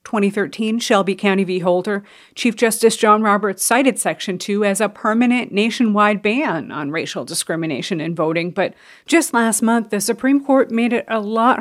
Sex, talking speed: female, 170 wpm